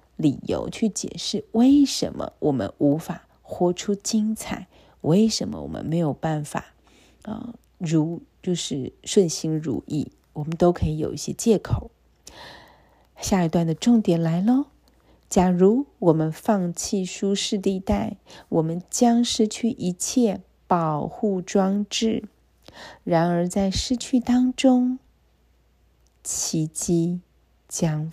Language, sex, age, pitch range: Chinese, female, 40-59, 165-220 Hz